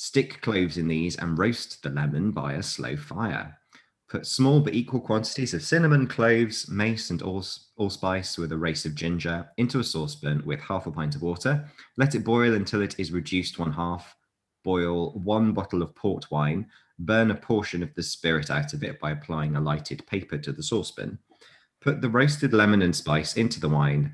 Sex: male